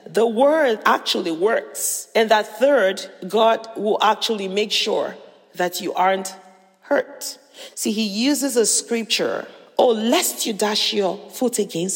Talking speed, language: 140 wpm, English